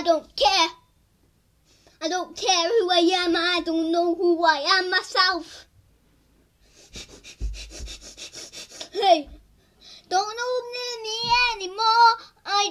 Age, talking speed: 20-39, 105 wpm